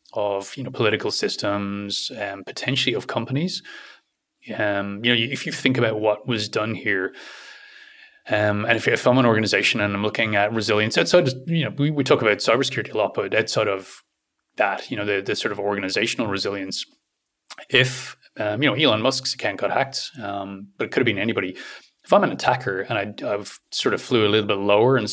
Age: 20-39